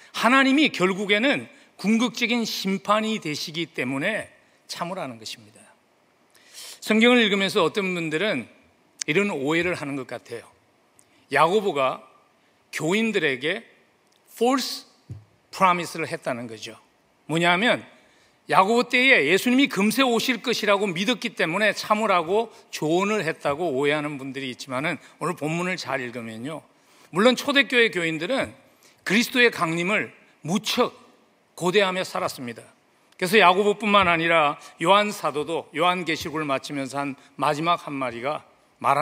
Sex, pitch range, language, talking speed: male, 160-225 Hz, English, 95 wpm